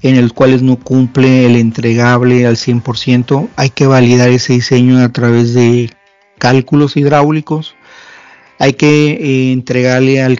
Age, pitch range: 40-59, 125-135 Hz